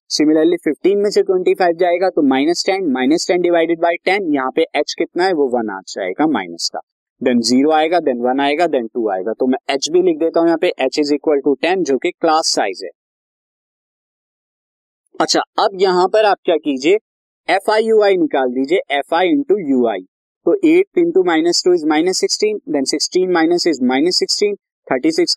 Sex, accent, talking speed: male, native, 135 wpm